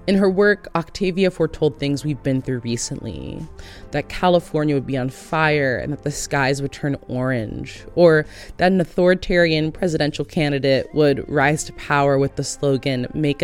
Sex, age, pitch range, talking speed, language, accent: female, 20-39, 130-180 Hz, 165 wpm, English, American